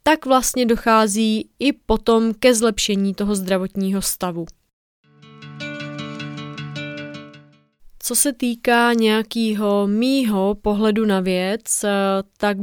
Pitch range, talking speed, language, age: 190-225 Hz, 90 wpm, Czech, 20-39